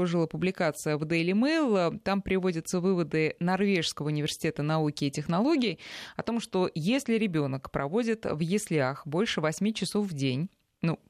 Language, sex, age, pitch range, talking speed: Russian, female, 20-39, 150-195 Hz, 145 wpm